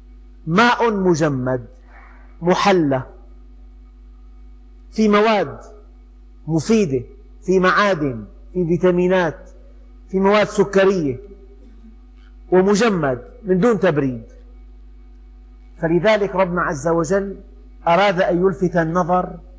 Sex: male